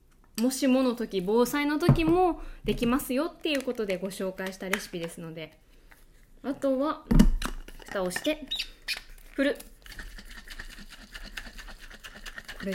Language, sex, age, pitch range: Japanese, female, 20-39, 205-290 Hz